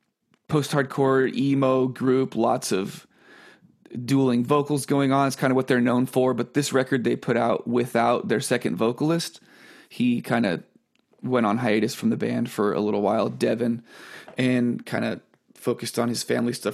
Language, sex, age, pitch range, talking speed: English, male, 30-49, 115-140 Hz, 170 wpm